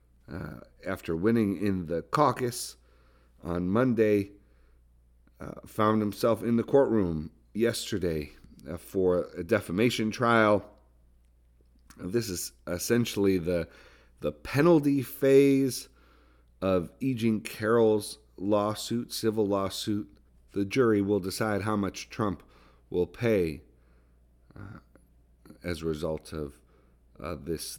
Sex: male